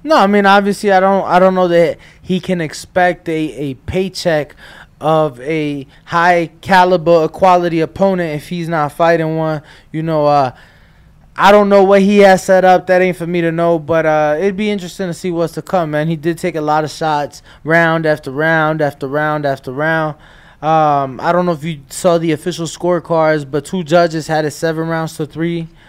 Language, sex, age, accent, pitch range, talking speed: English, male, 20-39, American, 155-195 Hz, 200 wpm